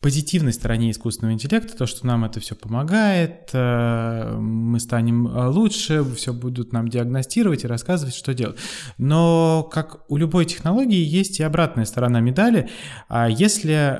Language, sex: Russian, male